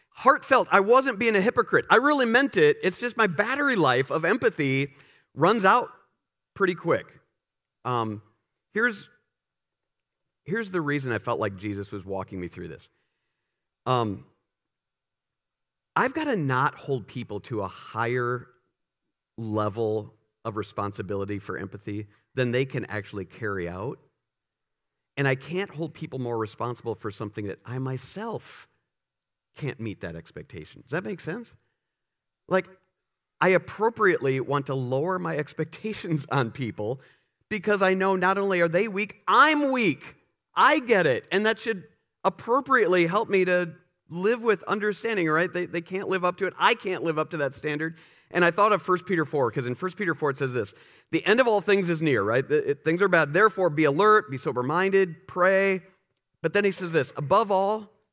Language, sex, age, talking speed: English, male, 40-59, 170 wpm